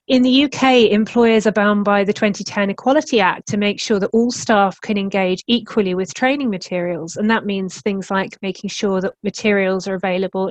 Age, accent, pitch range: 30-49, British, 190-230 Hz